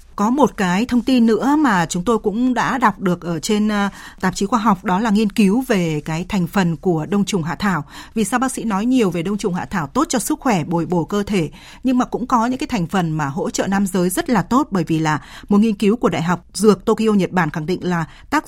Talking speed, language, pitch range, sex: 275 wpm, Vietnamese, 180-230 Hz, female